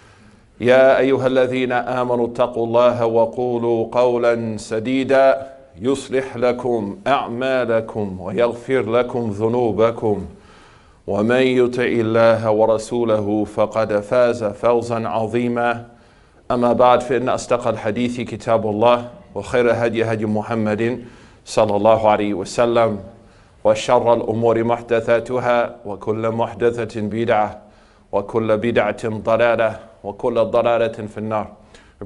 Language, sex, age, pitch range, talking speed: English, male, 40-59, 105-120 Hz, 110 wpm